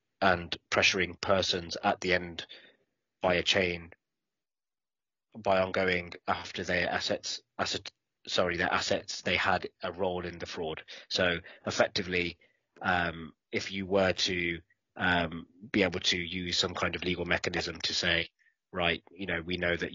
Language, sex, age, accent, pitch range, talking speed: English, male, 20-39, British, 85-95 Hz, 150 wpm